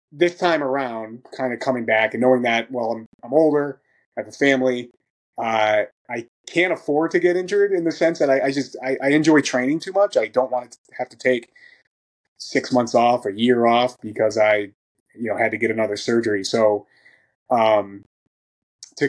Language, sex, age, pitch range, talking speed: English, male, 20-39, 115-140 Hz, 200 wpm